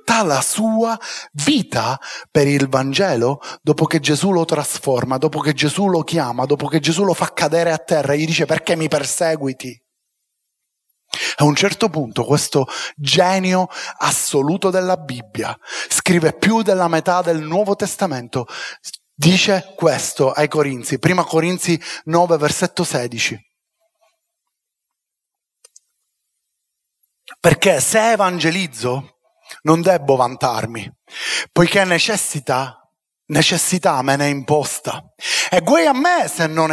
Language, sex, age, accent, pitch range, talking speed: Italian, male, 30-49, native, 150-235 Hz, 120 wpm